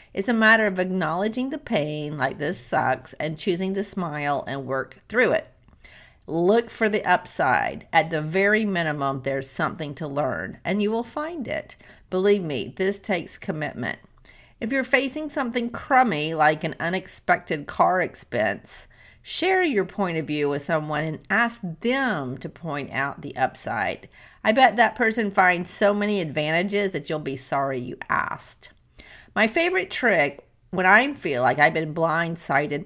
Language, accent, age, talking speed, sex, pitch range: English, American, 40-59, 165 wpm, female, 150-215 Hz